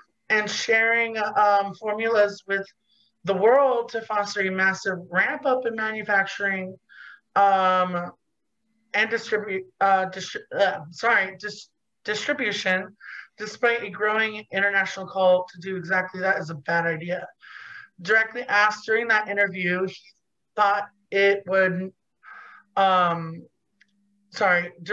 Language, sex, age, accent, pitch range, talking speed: English, male, 30-49, American, 195-220 Hz, 110 wpm